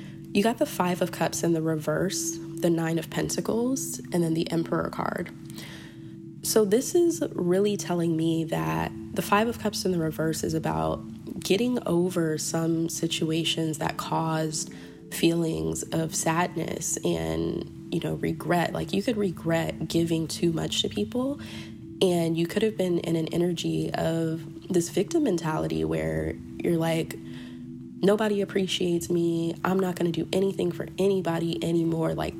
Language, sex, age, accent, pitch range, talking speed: English, female, 20-39, American, 155-180 Hz, 155 wpm